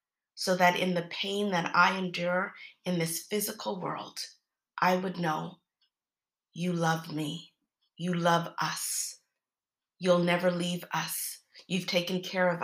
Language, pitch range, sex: English, 170-185 Hz, female